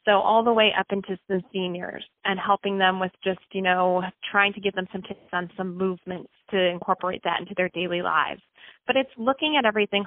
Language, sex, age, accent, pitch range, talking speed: English, female, 30-49, American, 180-210 Hz, 215 wpm